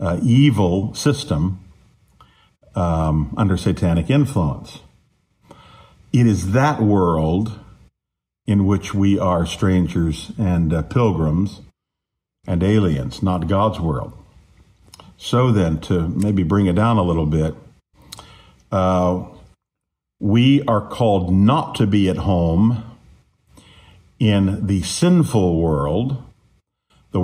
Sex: male